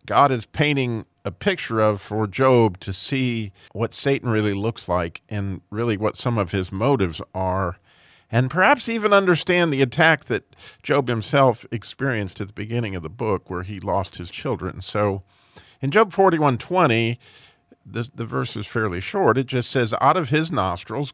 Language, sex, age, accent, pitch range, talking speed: English, male, 40-59, American, 100-130 Hz, 175 wpm